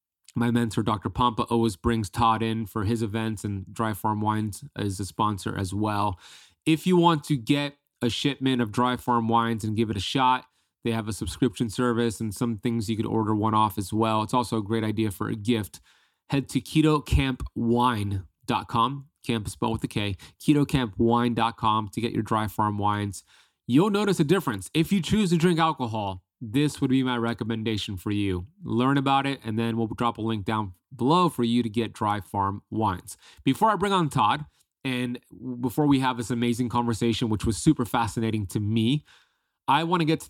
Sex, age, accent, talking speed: male, 20-39, American, 195 wpm